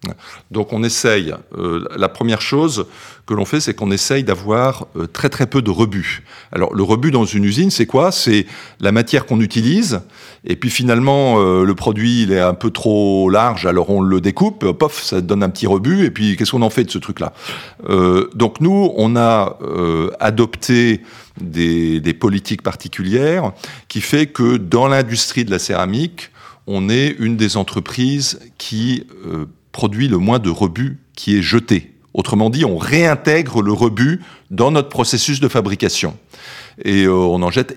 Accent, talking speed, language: French, 185 wpm, French